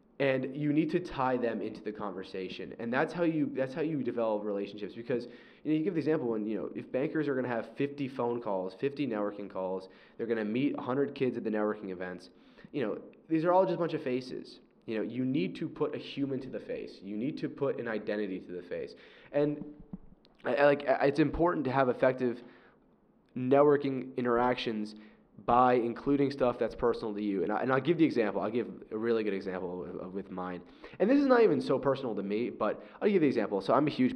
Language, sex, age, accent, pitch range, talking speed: English, male, 20-39, American, 105-140 Hz, 230 wpm